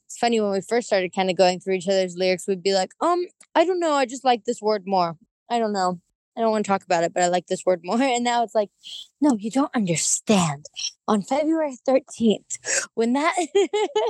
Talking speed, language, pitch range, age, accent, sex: 235 wpm, English, 180-250 Hz, 20-39, American, female